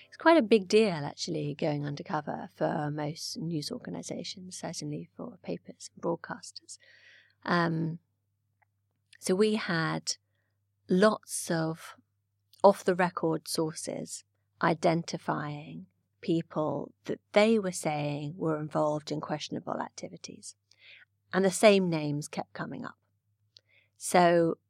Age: 30-49